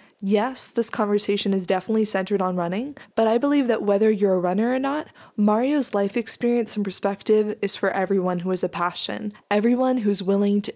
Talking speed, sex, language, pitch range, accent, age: 190 wpm, female, English, 195-235 Hz, American, 20-39